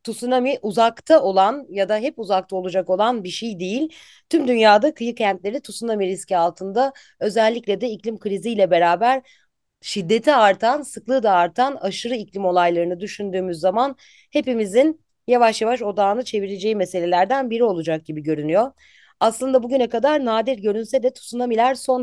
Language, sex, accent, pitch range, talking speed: Turkish, female, native, 185-250 Hz, 140 wpm